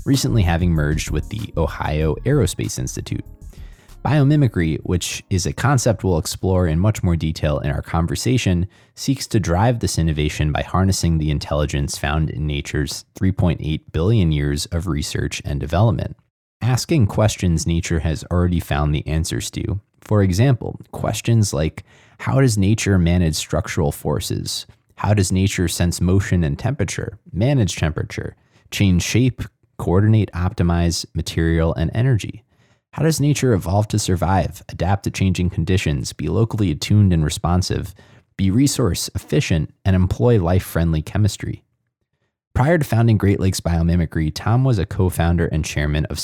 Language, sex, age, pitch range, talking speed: English, male, 30-49, 80-115 Hz, 145 wpm